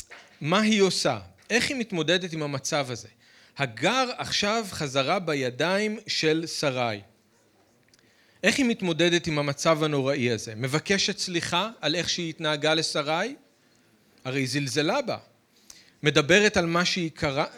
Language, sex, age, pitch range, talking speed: Hebrew, male, 40-59, 135-200 Hz, 125 wpm